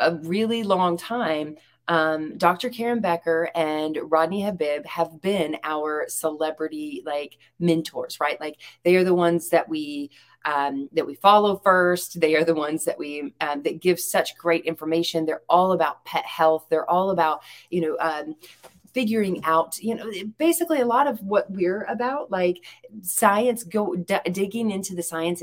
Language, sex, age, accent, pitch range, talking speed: English, female, 30-49, American, 160-205 Hz, 170 wpm